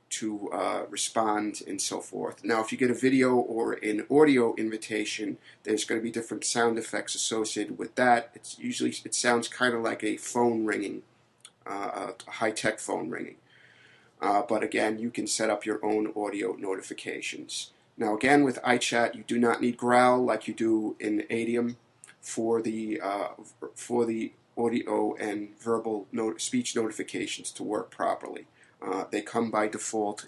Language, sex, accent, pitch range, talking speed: English, male, American, 110-125 Hz, 170 wpm